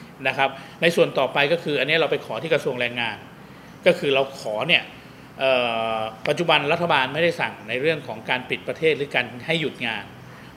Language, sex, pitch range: Thai, male, 130-160 Hz